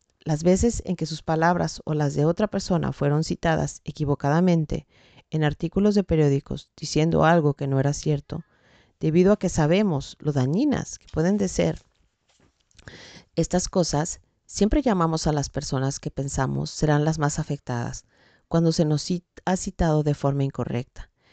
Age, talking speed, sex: 40-59, 155 wpm, female